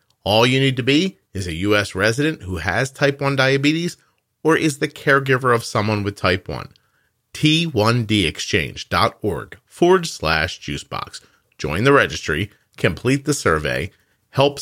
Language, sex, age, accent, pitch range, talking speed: English, male, 40-59, American, 105-140 Hz, 140 wpm